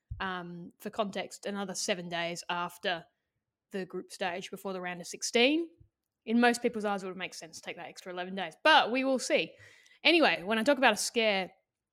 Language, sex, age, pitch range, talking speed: English, female, 10-29, 185-245 Hz, 200 wpm